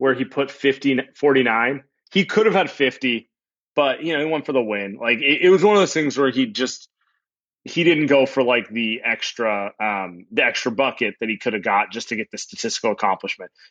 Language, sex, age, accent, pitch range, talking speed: English, male, 30-49, American, 110-150 Hz, 225 wpm